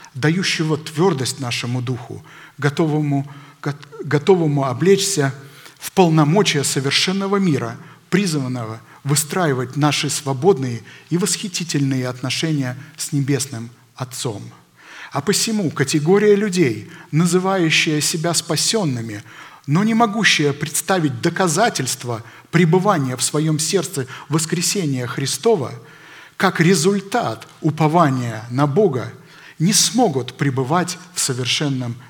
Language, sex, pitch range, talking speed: Russian, male, 135-175 Hz, 90 wpm